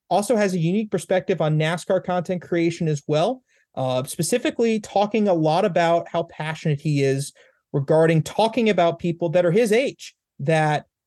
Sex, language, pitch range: male, English, 150-180 Hz